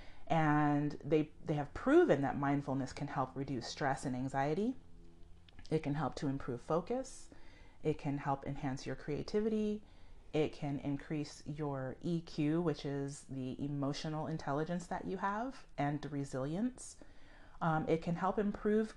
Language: English